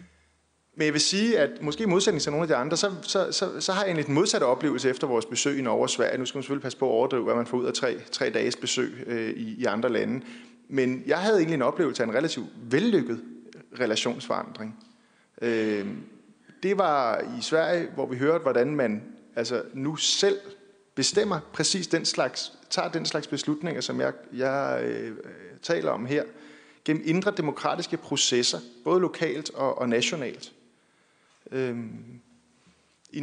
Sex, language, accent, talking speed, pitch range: male, Danish, native, 180 wpm, 120-170 Hz